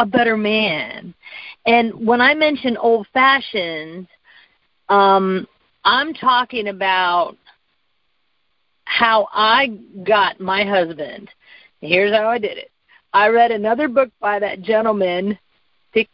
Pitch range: 195-270 Hz